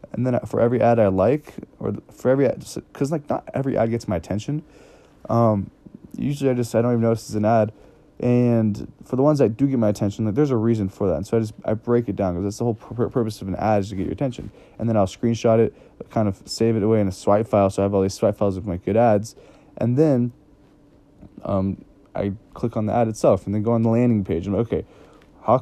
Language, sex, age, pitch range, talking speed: English, male, 20-39, 105-130 Hz, 260 wpm